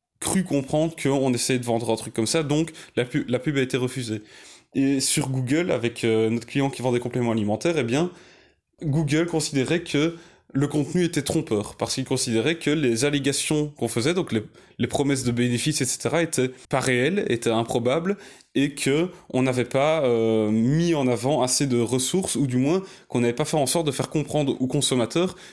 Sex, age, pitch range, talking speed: male, 20-39, 125-150 Hz, 200 wpm